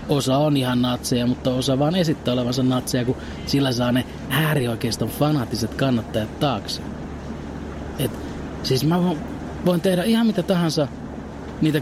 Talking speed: 135 wpm